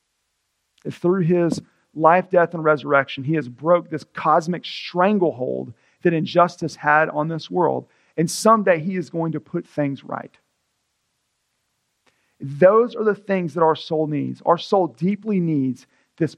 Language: English